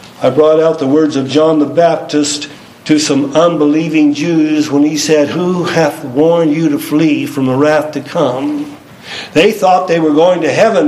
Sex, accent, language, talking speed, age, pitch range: male, American, English, 190 wpm, 60-79, 145-180 Hz